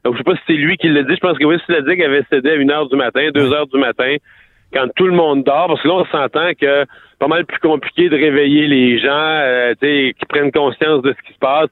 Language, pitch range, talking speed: French, 145-185 Hz, 300 wpm